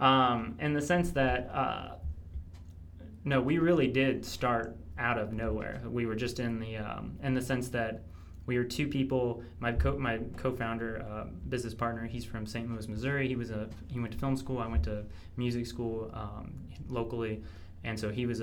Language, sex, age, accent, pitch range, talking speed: English, male, 20-39, American, 105-125 Hz, 190 wpm